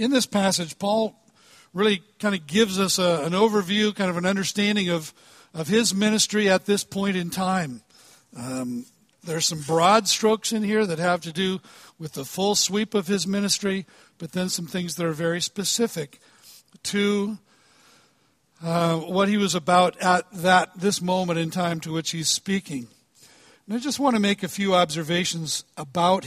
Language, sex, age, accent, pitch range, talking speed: English, male, 60-79, American, 160-200 Hz, 180 wpm